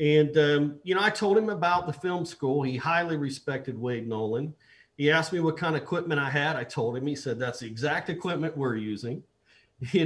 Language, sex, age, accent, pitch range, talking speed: English, male, 50-69, American, 130-165 Hz, 220 wpm